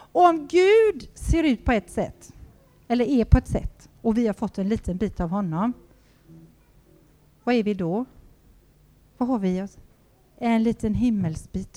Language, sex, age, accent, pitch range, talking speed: Swedish, female, 40-59, native, 175-245 Hz, 165 wpm